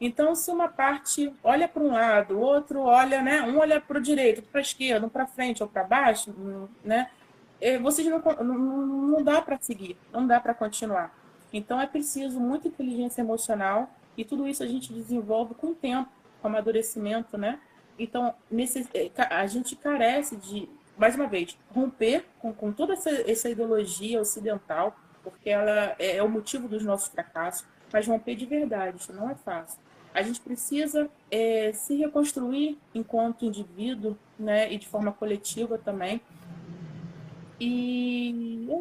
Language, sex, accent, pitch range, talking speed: Portuguese, female, Brazilian, 215-275 Hz, 165 wpm